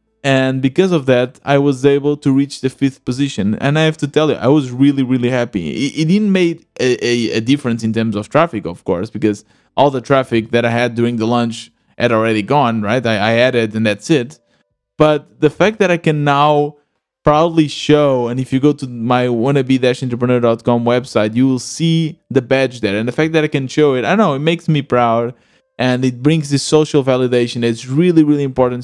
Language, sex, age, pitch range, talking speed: English, male, 20-39, 120-150 Hz, 215 wpm